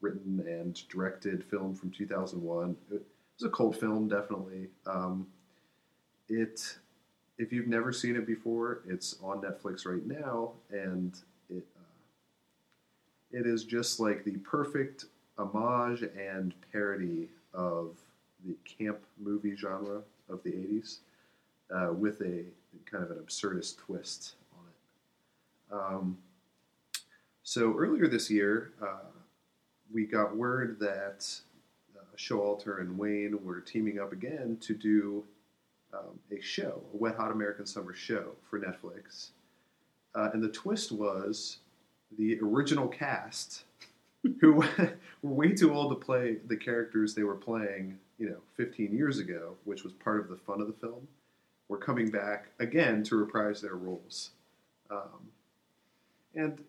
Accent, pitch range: American, 95-115 Hz